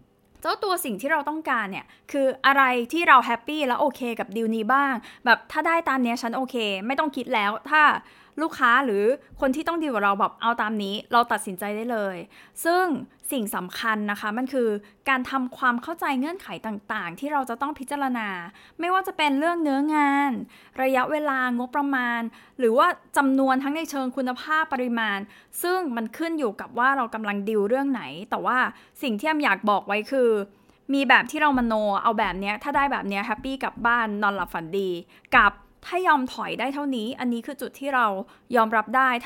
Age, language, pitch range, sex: 20-39, Thai, 220-280 Hz, female